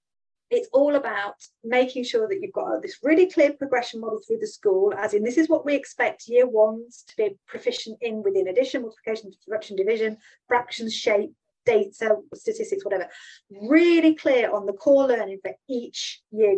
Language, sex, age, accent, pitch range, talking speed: English, female, 40-59, British, 215-325 Hz, 175 wpm